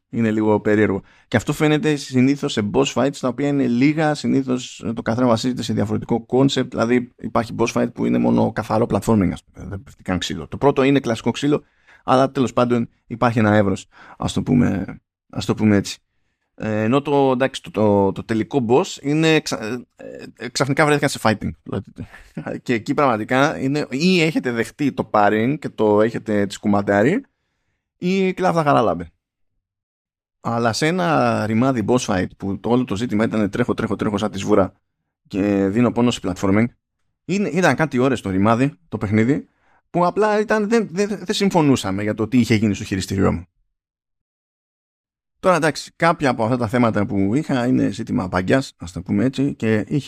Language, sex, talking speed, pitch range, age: Greek, male, 180 wpm, 100-140 Hz, 20-39